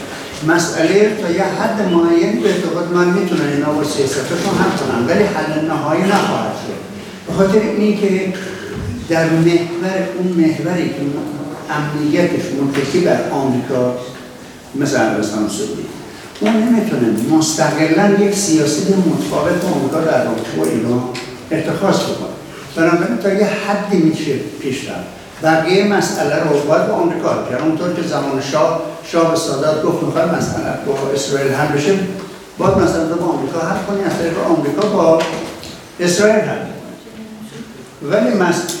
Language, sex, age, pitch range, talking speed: Persian, male, 60-79, 150-195 Hz, 140 wpm